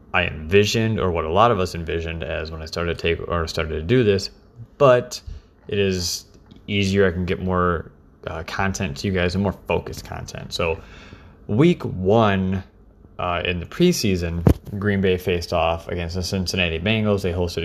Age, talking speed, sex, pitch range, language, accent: 20-39, 185 wpm, male, 85-105 Hz, English, American